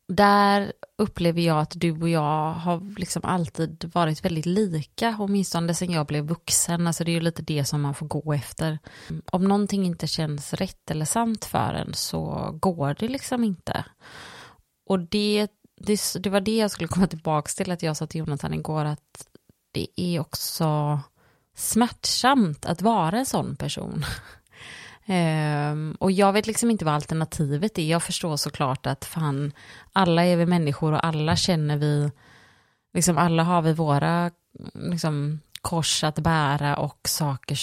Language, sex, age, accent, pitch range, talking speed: Swedish, female, 30-49, native, 150-180 Hz, 165 wpm